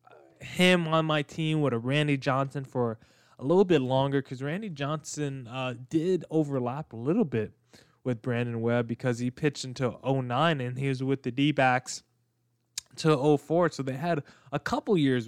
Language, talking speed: English, 175 wpm